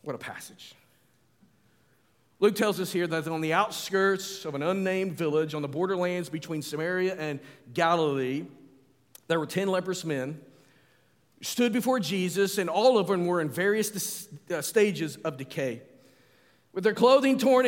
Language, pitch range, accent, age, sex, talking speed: English, 165-235 Hz, American, 40-59, male, 150 wpm